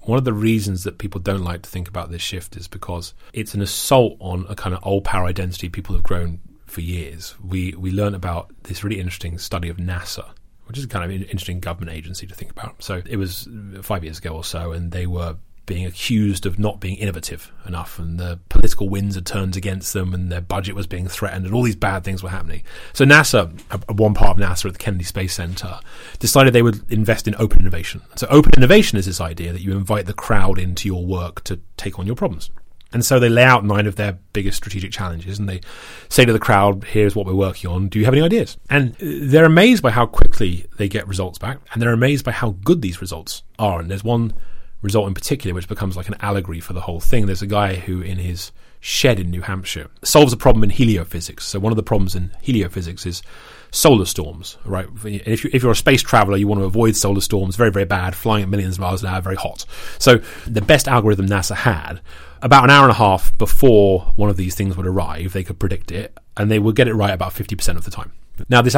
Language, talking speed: English, 240 wpm